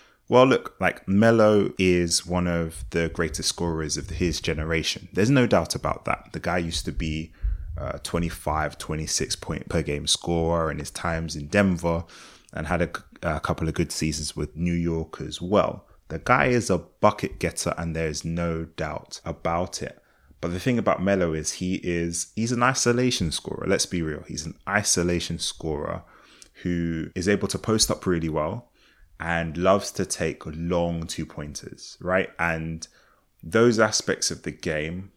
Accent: British